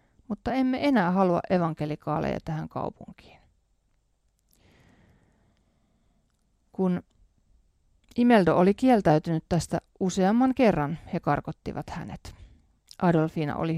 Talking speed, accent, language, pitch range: 85 wpm, native, Finnish, 155-205 Hz